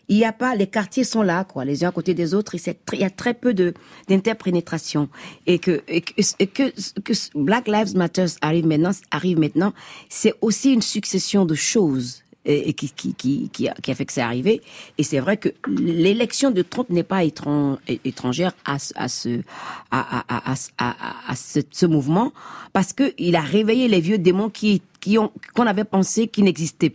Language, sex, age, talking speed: French, female, 40-59, 215 wpm